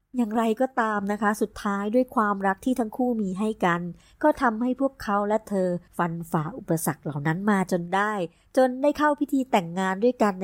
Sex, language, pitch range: male, Thai, 180-235 Hz